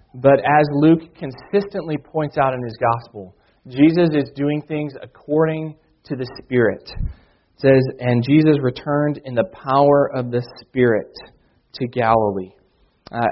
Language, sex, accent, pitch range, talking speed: English, male, American, 125-155 Hz, 140 wpm